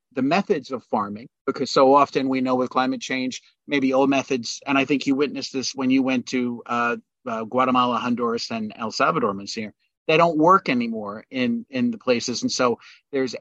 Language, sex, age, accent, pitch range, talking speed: English, male, 40-59, American, 125-155 Hz, 195 wpm